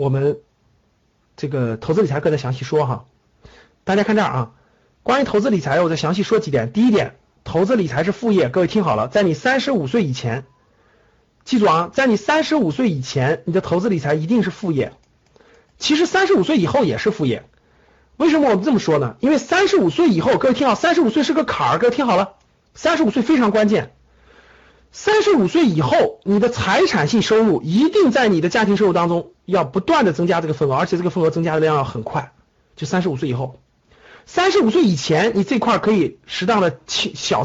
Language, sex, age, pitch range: Chinese, male, 50-69, 155-245 Hz